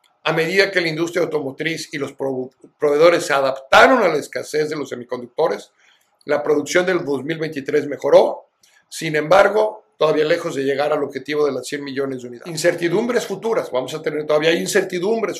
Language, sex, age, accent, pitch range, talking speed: Spanish, male, 50-69, Mexican, 150-190 Hz, 170 wpm